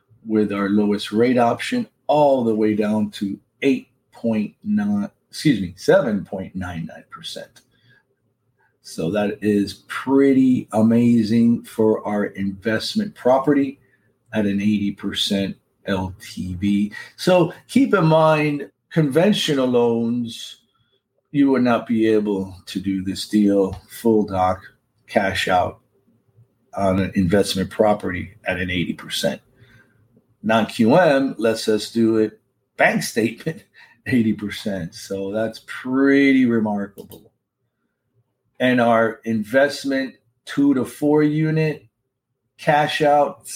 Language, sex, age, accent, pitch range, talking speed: English, male, 40-59, American, 105-135 Hz, 100 wpm